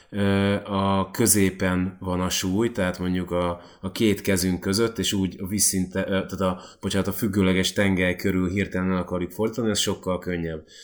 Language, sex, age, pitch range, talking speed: Hungarian, male, 20-39, 95-105 Hz, 160 wpm